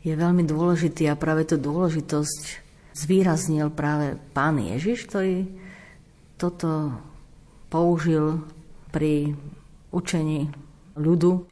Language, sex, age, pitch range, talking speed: Slovak, female, 50-69, 140-170 Hz, 90 wpm